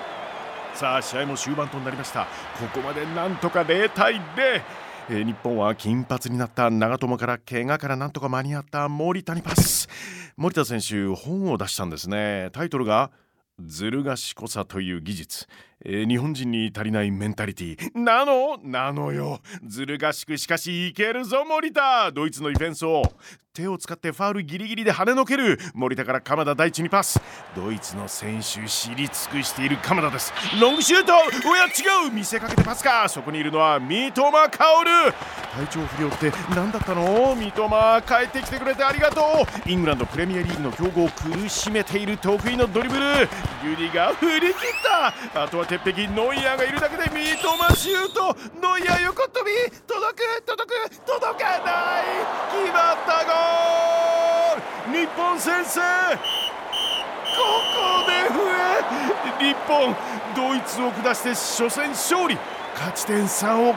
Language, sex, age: Japanese, male, 40-59